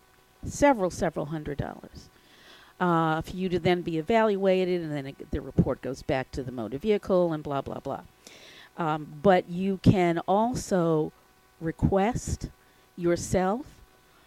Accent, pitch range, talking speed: American, 165-195 Hz, 140 wpm